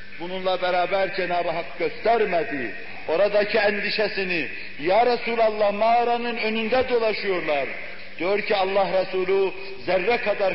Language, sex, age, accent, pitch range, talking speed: Turkish, male, 60-79, native, 185-230 Hz, 100 wpm